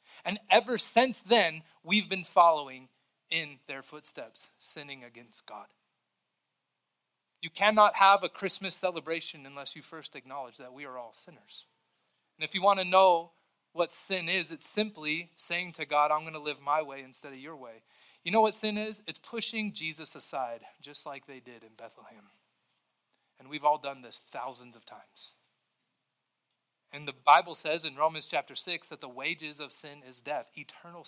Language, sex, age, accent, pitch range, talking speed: English, male, 30-49, American, 145-195 Hz, 175 wpm